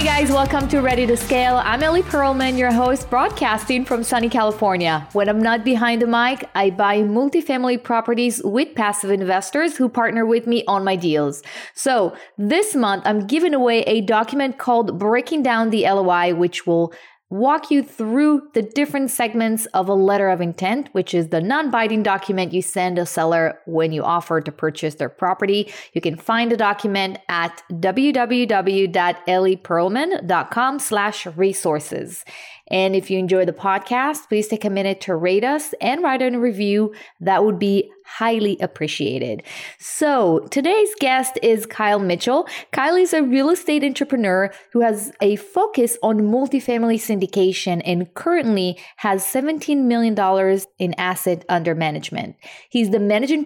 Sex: female